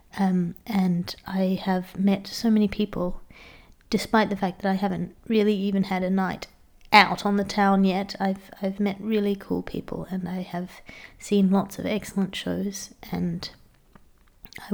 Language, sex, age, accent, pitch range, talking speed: English, female, 30-49, Australian, 185-210 Hz, 165 wpm